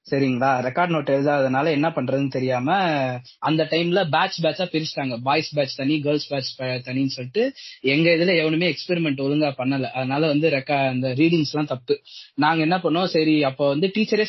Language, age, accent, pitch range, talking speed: Tamil, 20-39, native, 130-155 Hz, 165 wpm